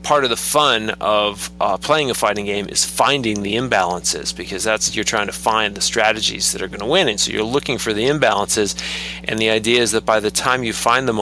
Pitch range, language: 90-135 Hz, English